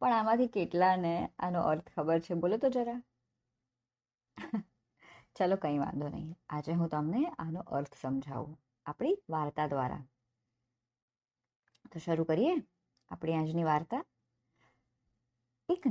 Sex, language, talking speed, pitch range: male, Gujarati, 70 wpm, 125-195 Hz